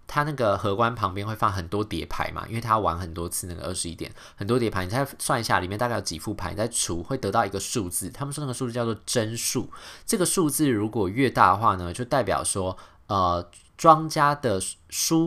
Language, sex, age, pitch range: Chinese, male, 20-39, 95-125 Hz